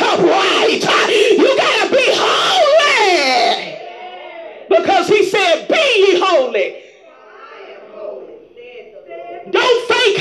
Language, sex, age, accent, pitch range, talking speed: English, male, 40-59, American, 345-450 Hz, 70 wpm